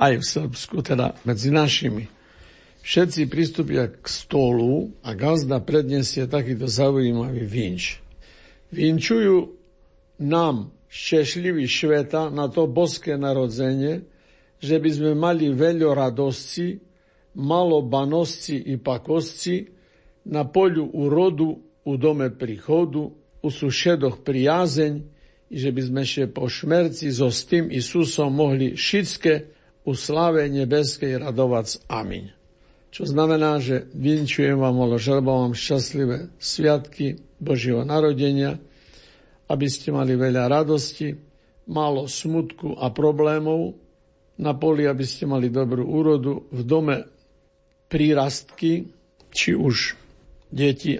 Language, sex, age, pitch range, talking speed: Slovak, male, 60-79, 130-155 Hz, 110 wpm